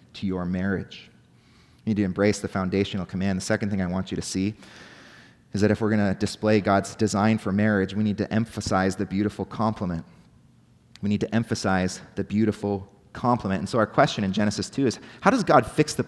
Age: 30-49